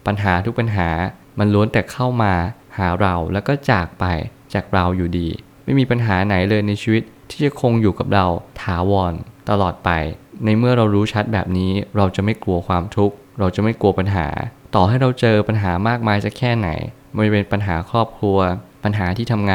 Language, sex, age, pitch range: Thai, male, 20-39, 95-115 Hz